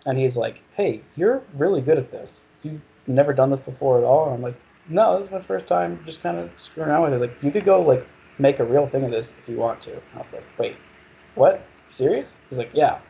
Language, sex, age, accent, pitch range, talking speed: English, male, 20-39, American, 115-135 Hz, 260 wpm